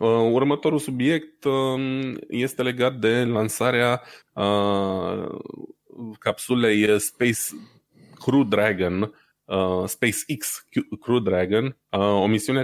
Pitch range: 100-120 Hz